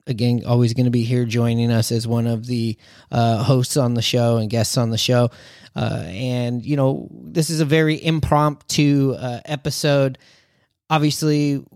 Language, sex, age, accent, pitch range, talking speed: English, male, 30-49, American, 120-140 Hz, 175 wpm